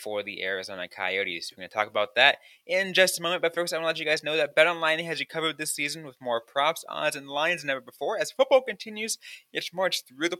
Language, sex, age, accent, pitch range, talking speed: English, male, 20-39, American, 125-175 Hz, 265 wpm